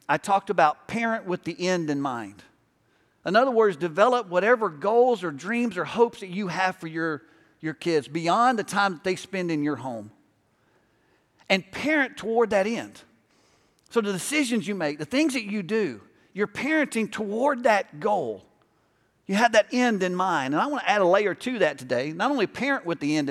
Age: 50-69